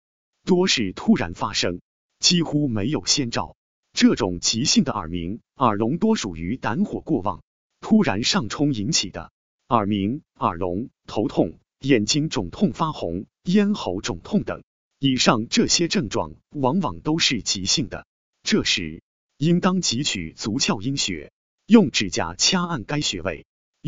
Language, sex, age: Chinese, male, 30-49